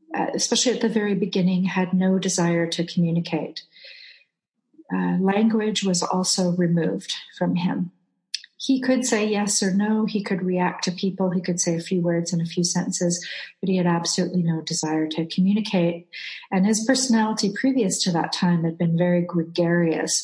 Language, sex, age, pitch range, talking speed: English, female, 40-59, 170-200 Hz, 170 wpm